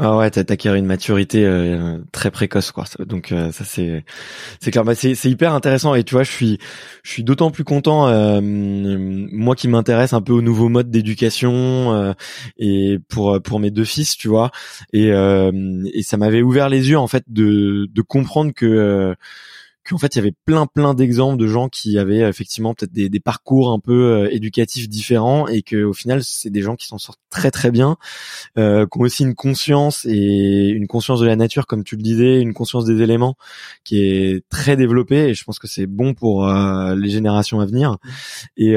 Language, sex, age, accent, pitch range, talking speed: French, male, 20-39, French, 105-125 Hz, 210 wpm